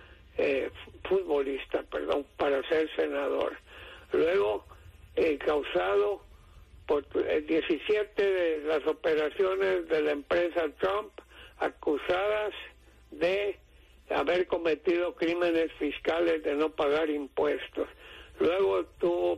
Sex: male